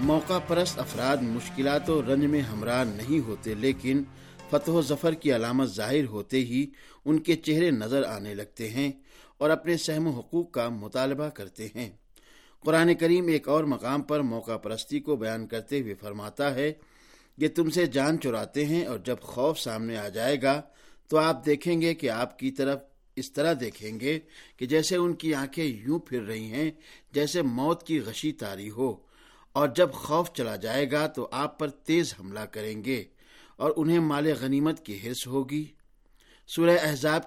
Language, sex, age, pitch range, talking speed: Urdu, male, 50-69, 125-155 Hz, 180 wpm